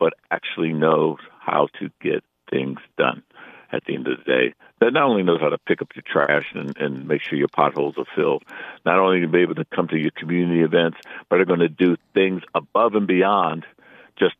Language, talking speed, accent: English, 220 wpm, American